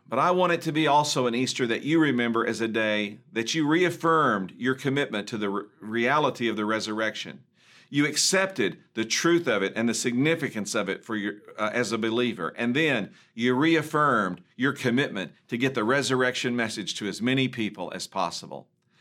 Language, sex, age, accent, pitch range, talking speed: English, male, 50-69, American, 110-140 Hz, 195 wpm